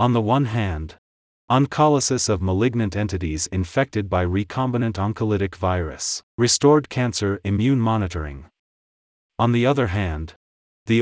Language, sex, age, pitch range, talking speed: English, male, 30-49, 90-120 Hz, 120 wpm